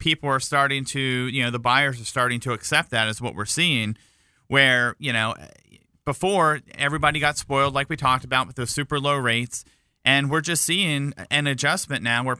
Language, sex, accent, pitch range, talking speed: English, male, American, 120-145 Hz, 200 wpm